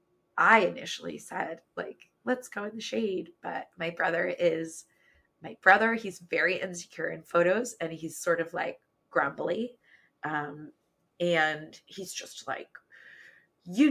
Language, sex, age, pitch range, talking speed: English, female, 20-39, 170-240 Hz, 140 wpm